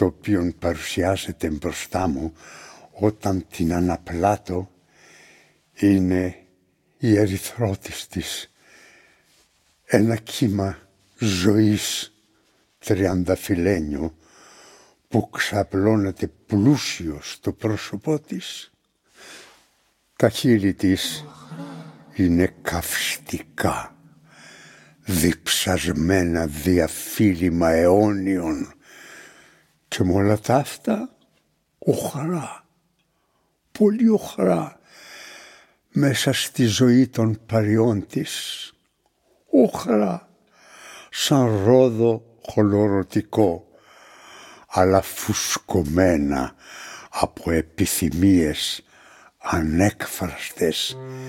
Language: Greek